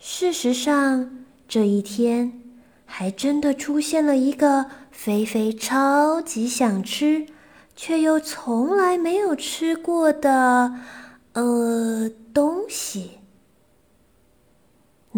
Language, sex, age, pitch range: Chinese, female, 20-39, 215-280 Hz